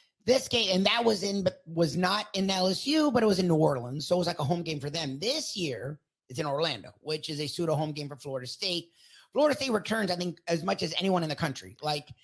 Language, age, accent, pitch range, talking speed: English, 30-49, American, 155-190 Hz, 260 wpm